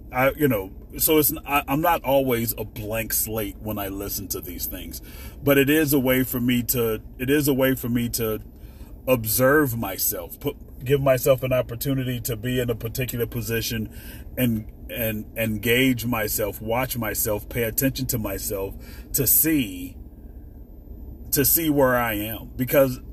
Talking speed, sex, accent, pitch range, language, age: 160 wpm, male, American, 105-135 Hz, English, 30-49